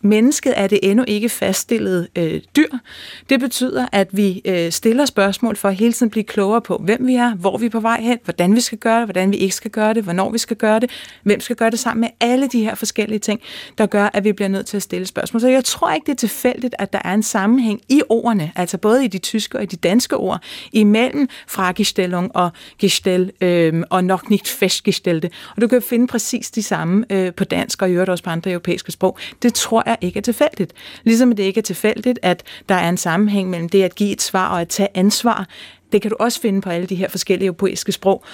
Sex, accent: female, native